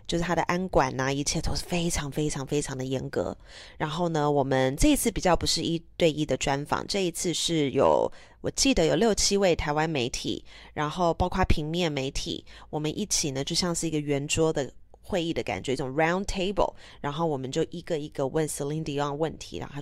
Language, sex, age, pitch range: Chinese, female, 20-39, 145-180 Hz